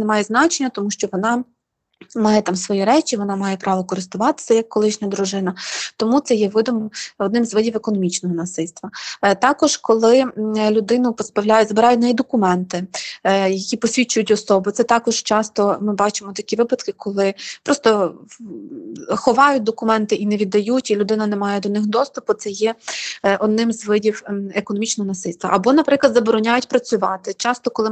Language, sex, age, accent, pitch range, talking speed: Ukrainian, female, 20-39, native, 210-245 Hz, 155 wpm